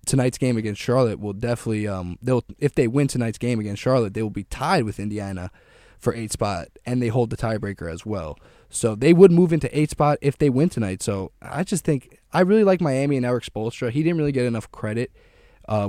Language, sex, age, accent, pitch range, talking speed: English, male, 10-29, American, 100-125 Hz, 220 wpm